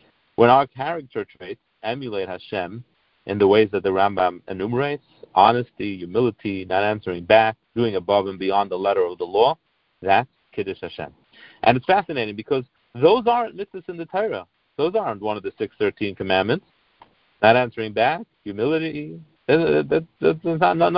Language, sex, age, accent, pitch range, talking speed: English, male, 50-69, American, 100-155 Hz, 140 wpm